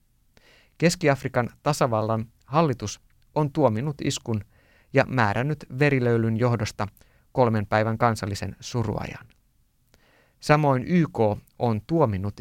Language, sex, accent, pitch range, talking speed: Finnish, male, native, 105-140 Hz, 85 wpm